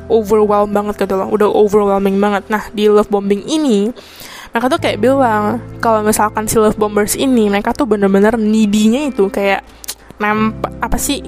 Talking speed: 165 wpm